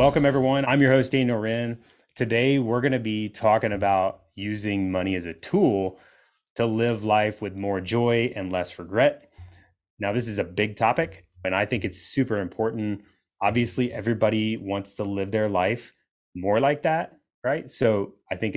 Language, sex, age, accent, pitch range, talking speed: English, male, 30-49, American, 95-115 Hz, 175 wpm